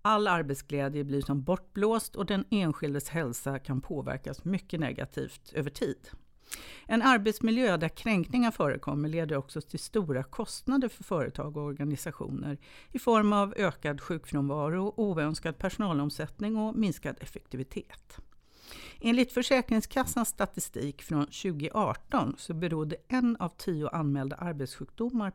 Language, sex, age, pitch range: Swedish, female, 60-79, 145-215 Hz